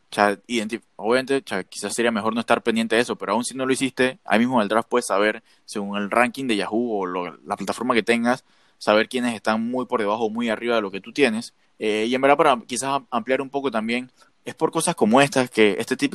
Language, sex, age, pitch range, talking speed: Spanish, male, 20-39, 110-130 Hz, 240 wpm